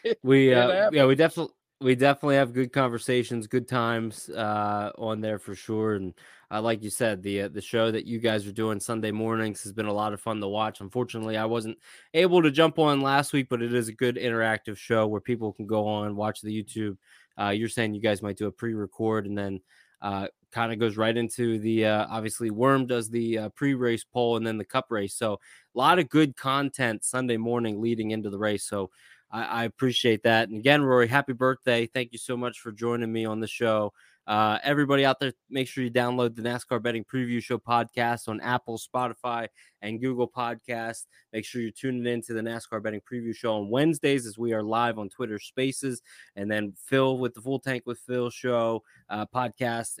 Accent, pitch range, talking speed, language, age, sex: American, 110-125 Hz, 215 wpm, English, 20-39, male